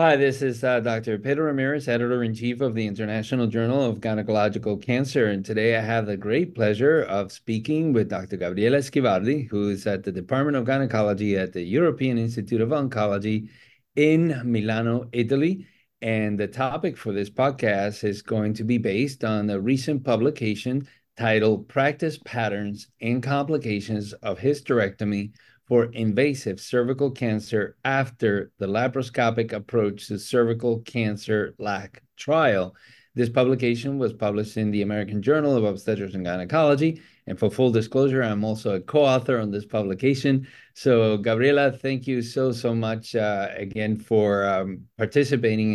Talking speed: 150 wpm